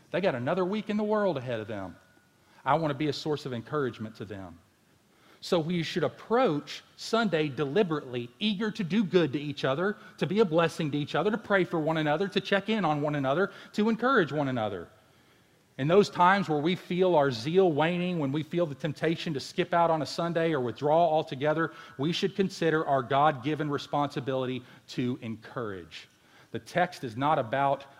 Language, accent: English, American